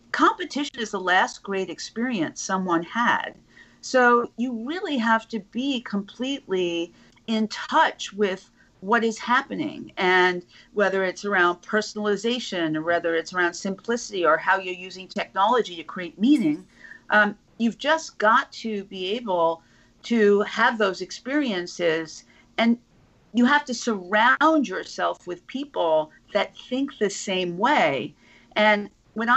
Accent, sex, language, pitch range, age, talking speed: American, female, English, 185-245 Hz, 50-69, 135 wpm